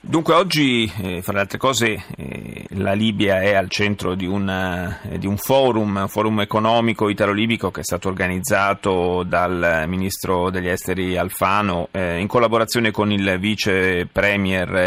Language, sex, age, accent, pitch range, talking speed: Italian, male, 30-49, native, 95-115 Hz, 155 wpm